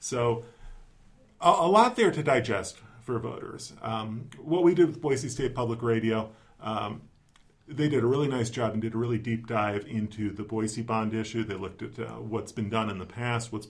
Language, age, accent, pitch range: English, 40-59, American, 105-120 Hz